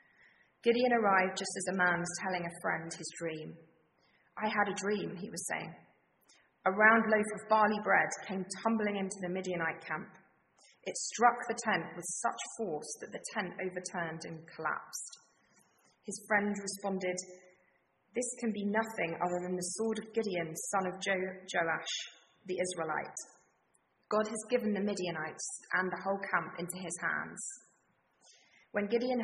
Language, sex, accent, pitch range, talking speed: English, female, British, 175-220 Hz, 160 wpm